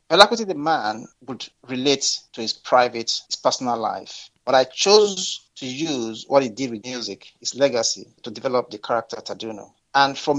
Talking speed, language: 180 wpm, English